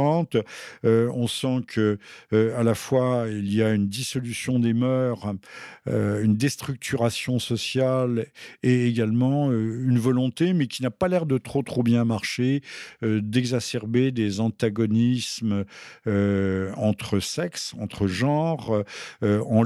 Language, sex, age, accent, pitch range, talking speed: French, male, 50-69, French, 105-130 Hz, 135 wpm